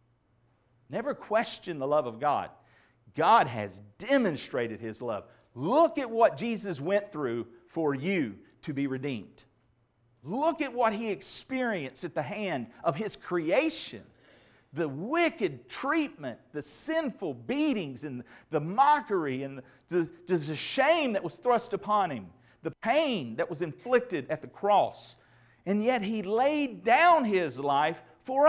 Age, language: 50-69, English